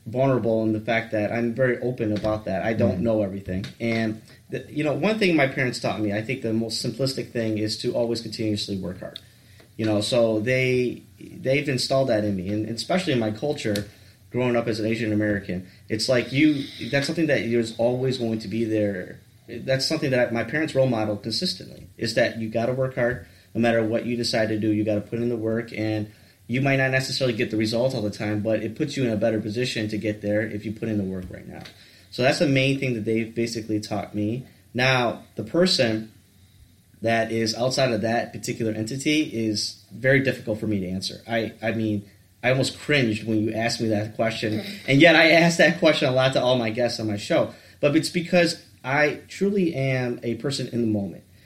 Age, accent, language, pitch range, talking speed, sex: 30-49, American, English, 110-130 Hz, 225 wpm, male